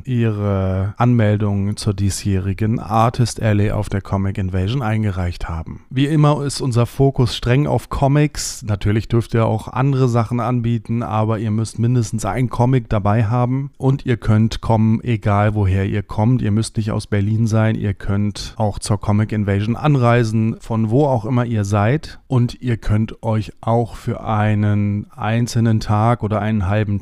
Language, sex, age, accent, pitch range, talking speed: German, male, 30-49, German, 100-120 Hz, 165 wpm